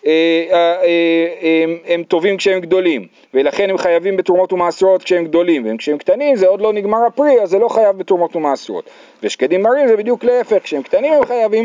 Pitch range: 175-265 Hz